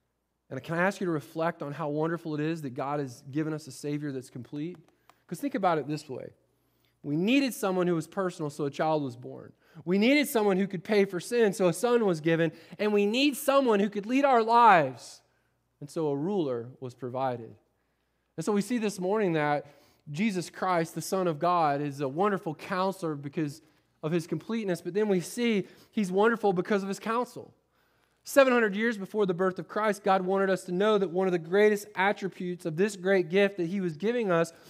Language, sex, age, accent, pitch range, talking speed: English, male, 20-39, American, 160-215 Hz, 215 wpm